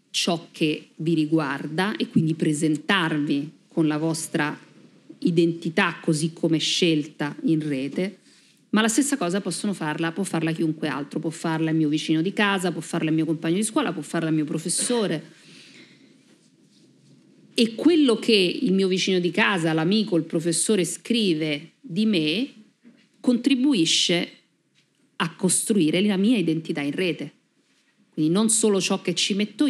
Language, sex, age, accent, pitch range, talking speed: Italian, female, 40-59, native, 160-220 Hz, 150 wpm